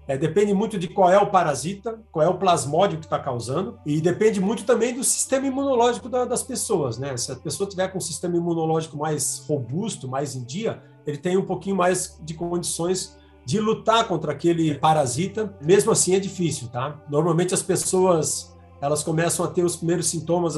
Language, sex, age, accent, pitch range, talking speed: Portuguese, male, 50-69, Brazilian, 140-190 Hz, 190 wpm